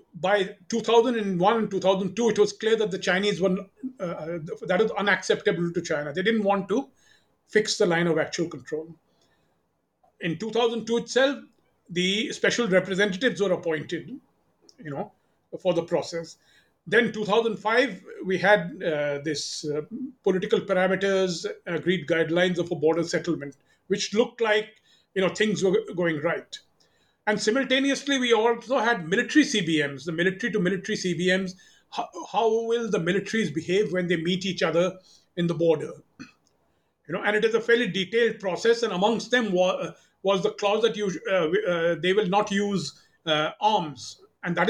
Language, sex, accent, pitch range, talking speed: English, male, Indian, 175-220 Hz, 155 wpm